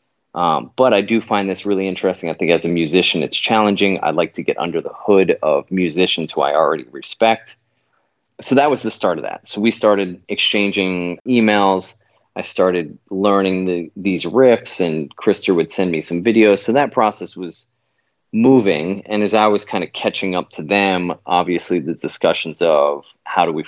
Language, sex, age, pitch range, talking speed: English, male, 30-49, 90-105 Hz, 190 wpm